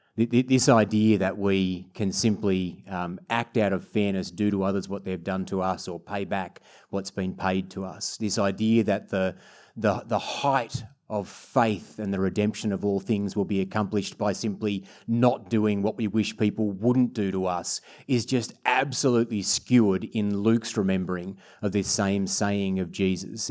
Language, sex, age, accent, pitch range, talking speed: English, male, 30-49, Australian, 95-120 Hz, 180 wpm